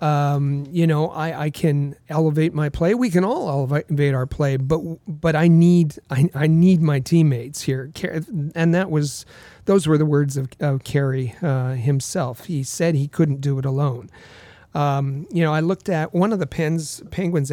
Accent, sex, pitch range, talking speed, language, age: American, male, 135-165 Hz, 190 wpm, English, 40-59